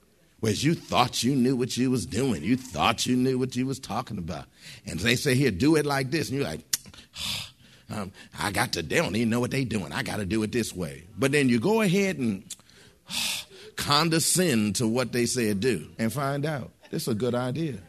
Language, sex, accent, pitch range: English, male, American, 115-165 Hz